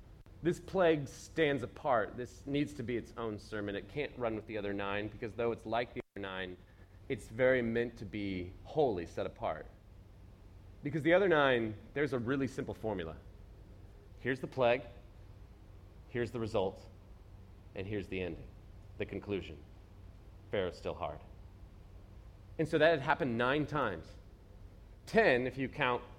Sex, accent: male, American